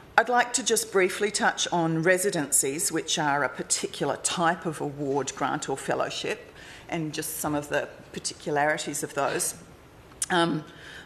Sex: female